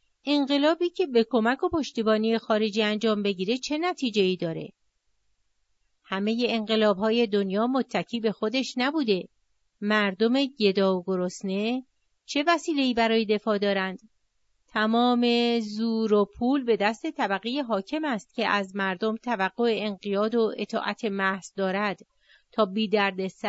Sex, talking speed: female, 130 wpm